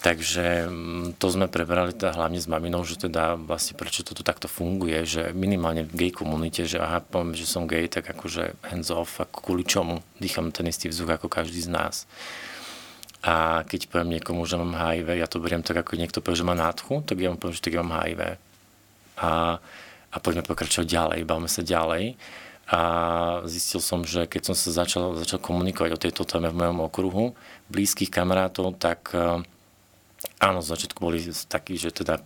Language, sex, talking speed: Slovak, male, 185 wpm